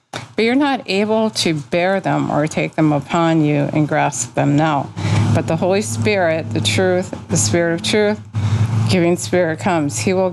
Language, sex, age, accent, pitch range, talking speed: English, female, 50-69, American, 150-175 Hz, 180 wpm